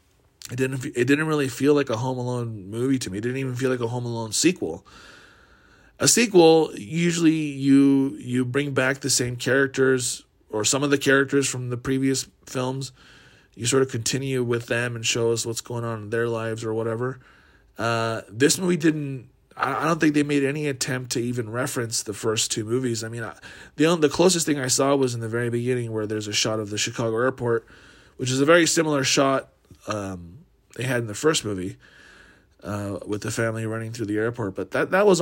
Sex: male